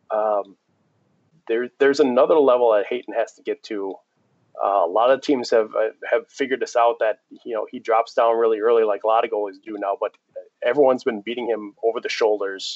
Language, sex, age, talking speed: English, male, 30-49, 210 wpm